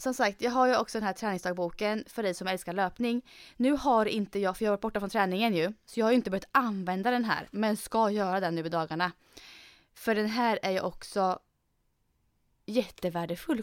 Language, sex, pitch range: Swedish, female, 185-240 Hz